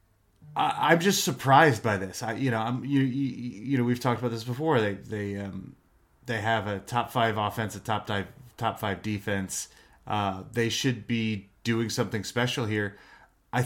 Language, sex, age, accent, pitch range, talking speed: English, male, 30-49, American, 95-120 Hz, 185 wpm